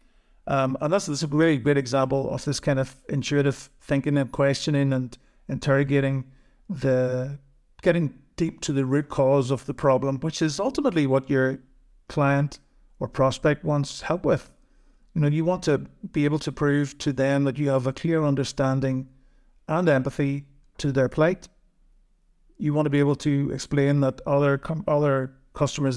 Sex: male